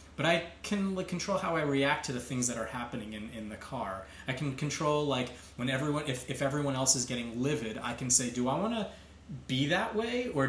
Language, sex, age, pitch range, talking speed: English, male, 20-39, 110-140 Hz, 225 wpm